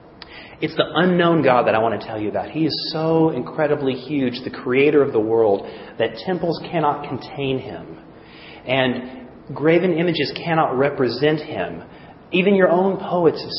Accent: American